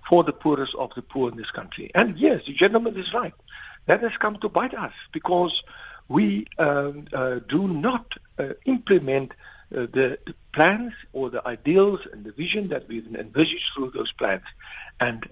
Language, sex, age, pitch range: English, male, 60-79, 135-210 Hz